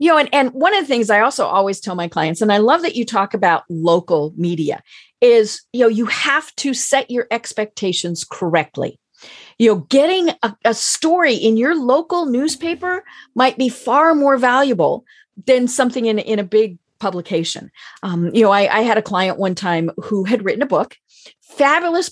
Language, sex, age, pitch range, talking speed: English, female, 40-59, 195-275 Hz, 195 wpm